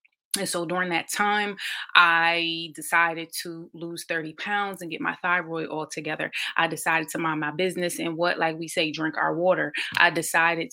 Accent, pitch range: American, 160-180 Hz